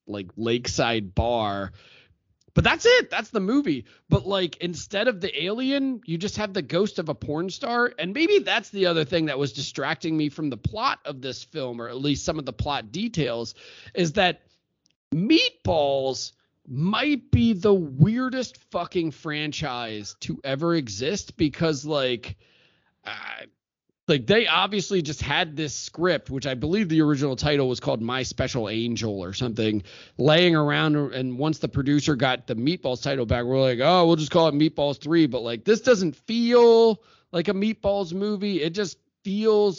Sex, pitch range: male, 130-180 Hz